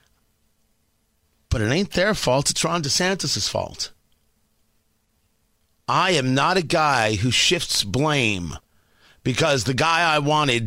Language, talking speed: English, 125 wpm